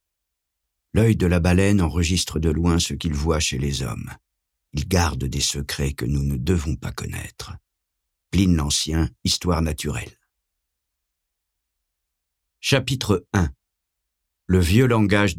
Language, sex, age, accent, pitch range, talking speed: French, male, 50-69, French, 75-110 Hz, 125 wpm